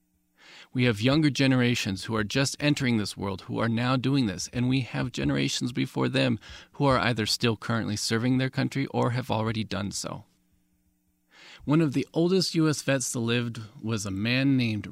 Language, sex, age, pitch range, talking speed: English, male, 40-59, 105-140 Hz, 185 wpm